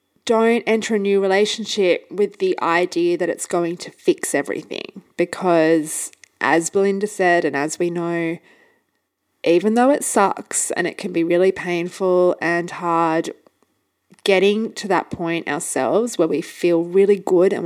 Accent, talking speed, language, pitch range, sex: Australian, 155 wpm, English, 165-205 Hz, female